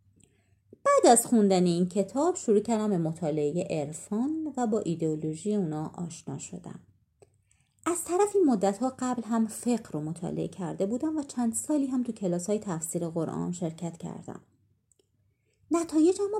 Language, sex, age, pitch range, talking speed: Persian, female, 30-49, 170-255 Hz, 135 wpm